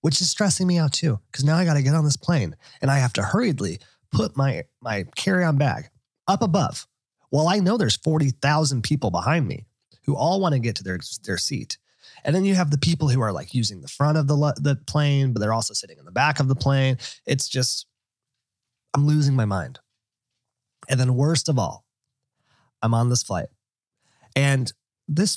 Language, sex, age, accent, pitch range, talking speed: English, male, 30-49, American, 120-155 Hz, 205 wpm